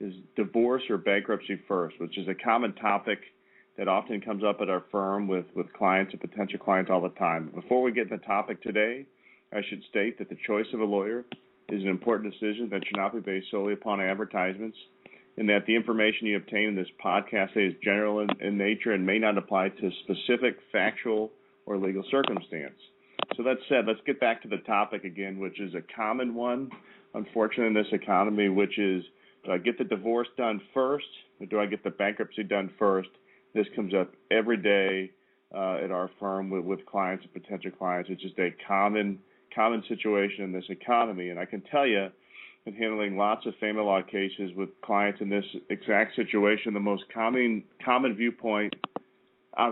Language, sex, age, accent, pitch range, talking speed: English, male, 40-59, American, 95-110 Hz, 195 wpm